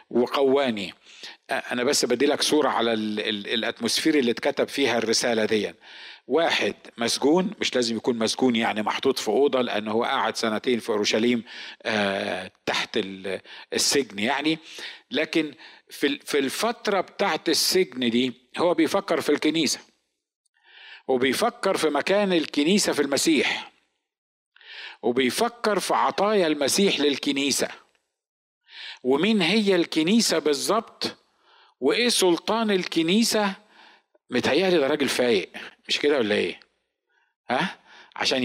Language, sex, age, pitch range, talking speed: Arabic, male, 50-69, 120-180 Hz, 110 wpm